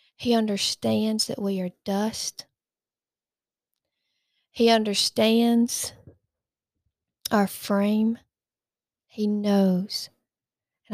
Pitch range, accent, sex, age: 190-220 Hz, American, female, 40-59